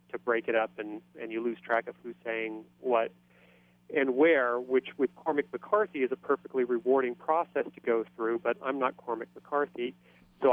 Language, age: English, 30-49